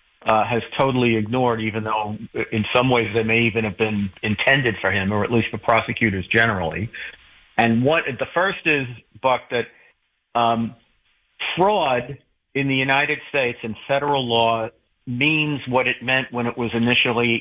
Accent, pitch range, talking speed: American, 110-130 Hz, 160 wpm